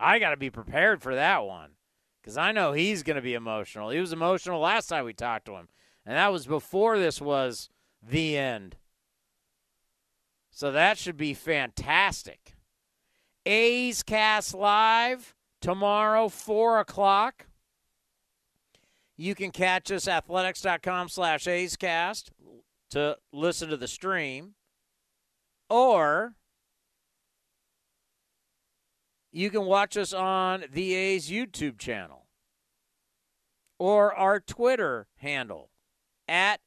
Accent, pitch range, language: American, 155-205 Hz, English